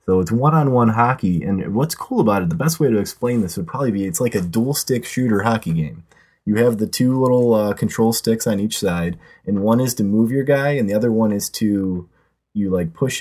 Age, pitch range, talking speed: 20-39, 90-120 Hz, 235 wpm